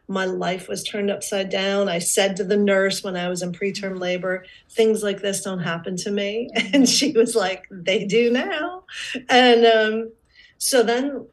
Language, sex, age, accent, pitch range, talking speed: English, female, 40-59, American, 190-225 Hz, 185 wpm